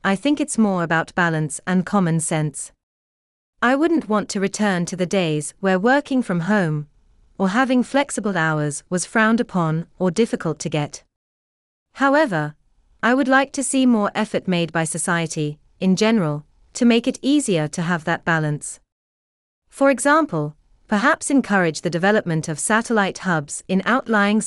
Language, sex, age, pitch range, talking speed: English, female, 40-59, 155-230 Hz, 155 wpm